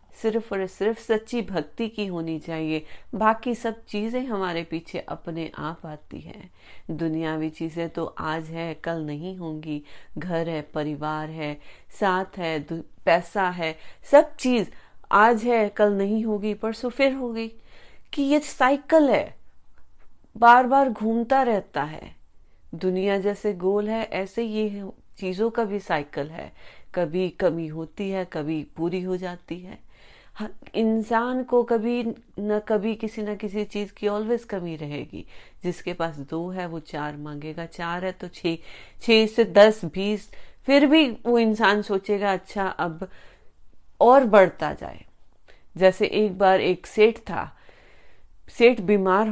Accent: native